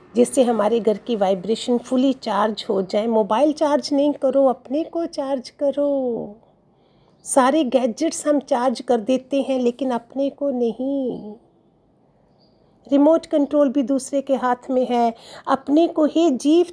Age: 50-69